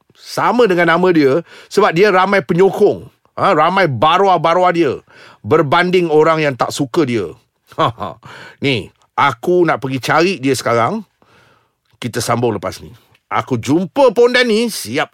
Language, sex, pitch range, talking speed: Malay, male, 130-215 Hz, 145 wpm